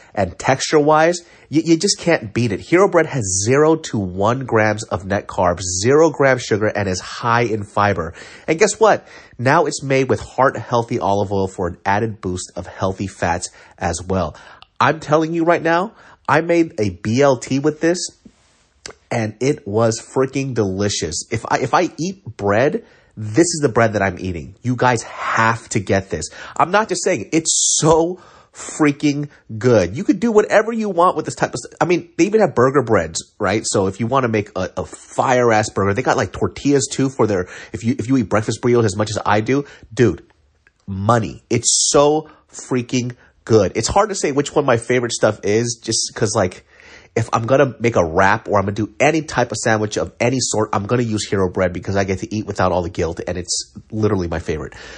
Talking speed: 210 wpm